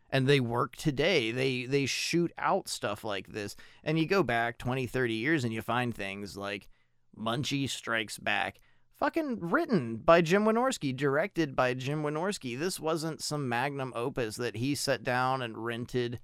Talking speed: 170 wpm